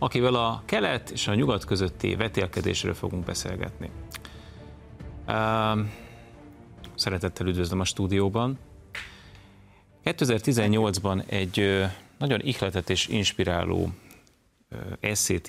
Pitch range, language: 90-105 Hz, Hungarian